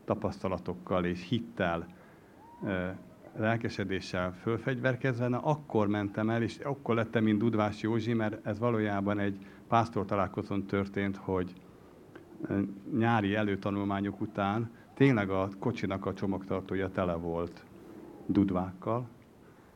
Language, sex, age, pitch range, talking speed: Hungarian, male, 50-69, 95-115 Hz, 105 wpm